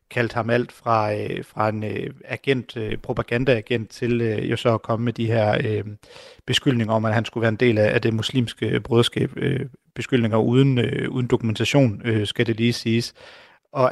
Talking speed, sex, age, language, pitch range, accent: 200 wpm, male, 30-49, Danish, 115-130 Hz, native